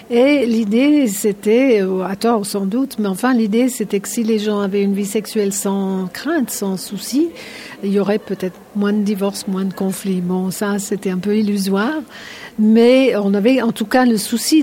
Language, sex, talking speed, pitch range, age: French, female, 195 wpm, 200-245 Hz, 60-79